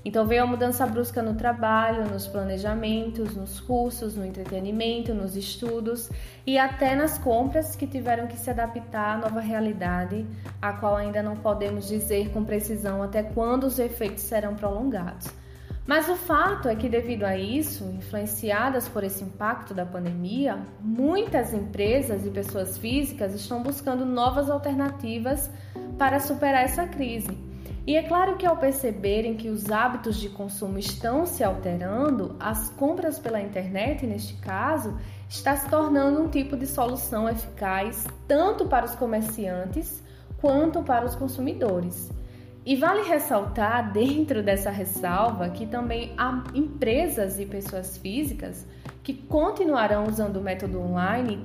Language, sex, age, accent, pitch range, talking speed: Portuguese, female, 20-39, Brazilian, 200-270 Hz, 145 wpm